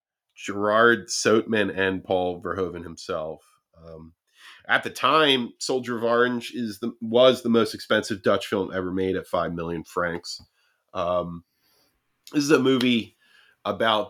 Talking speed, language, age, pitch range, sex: 140 wpm, English, 30-49, 85-105 Hz, male